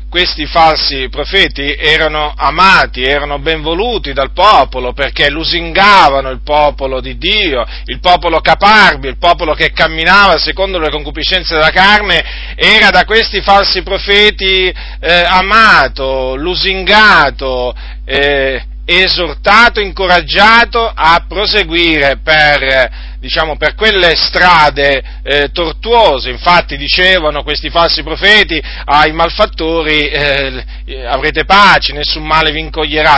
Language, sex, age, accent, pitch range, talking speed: Italian, male, 40-59, native, 150-190 Hz, 110 wpm